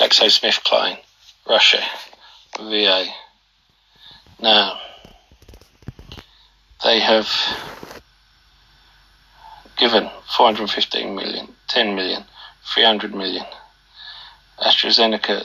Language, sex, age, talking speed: English, male, 40-59, 60 wpm